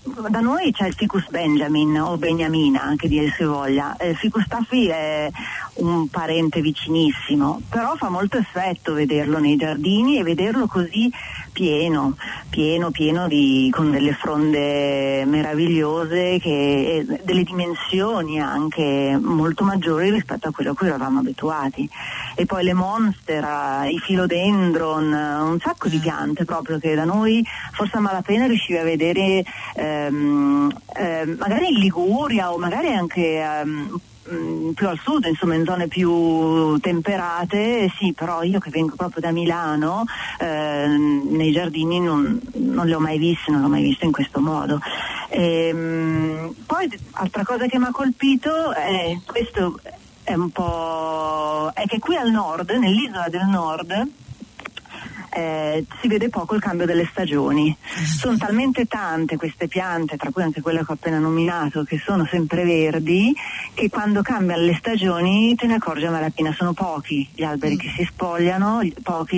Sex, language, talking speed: female, Italian, 150 wpm